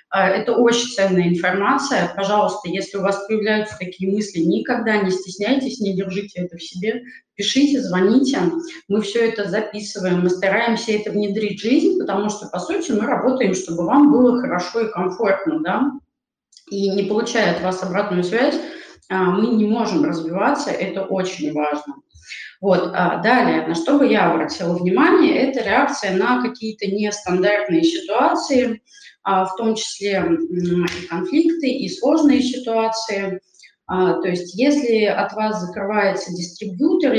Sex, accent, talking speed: female, native, 140 wpm